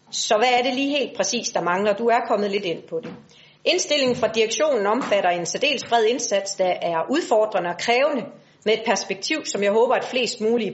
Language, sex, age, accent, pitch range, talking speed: Danish, female, 40-59, native, 190-240 Hz, 220 wpm